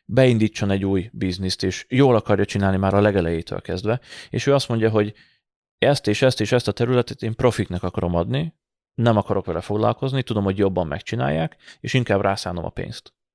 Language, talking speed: Hungarian, 185 wpm